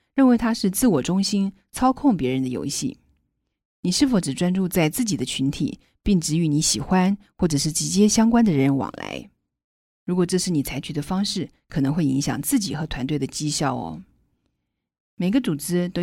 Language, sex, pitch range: Chinese, female, 145-205 Hz